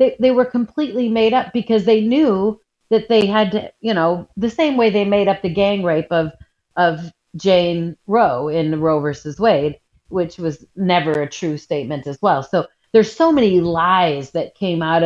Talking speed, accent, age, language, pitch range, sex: 190 wpm, American, 40-59, English, 165-215 Hz, female